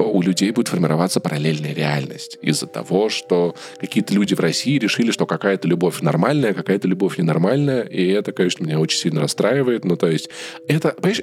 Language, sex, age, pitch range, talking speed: Russian, male, 20-39, 95-145 Hz, 165 wpm